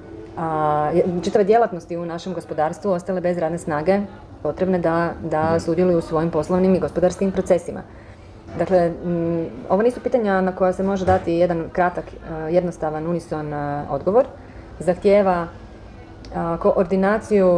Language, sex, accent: Croatian, female, native